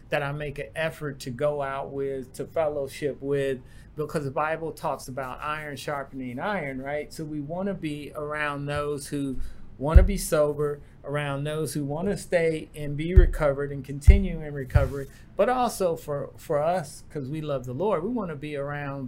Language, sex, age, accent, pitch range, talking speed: English, male, 40-59, American, 135-155 Hz, 190 wpm